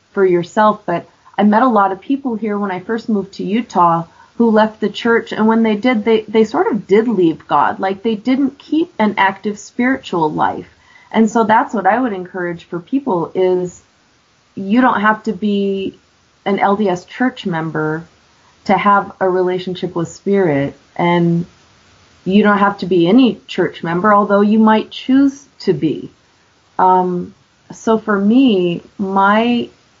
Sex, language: female, English